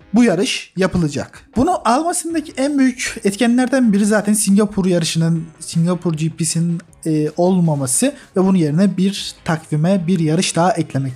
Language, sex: Turkish, male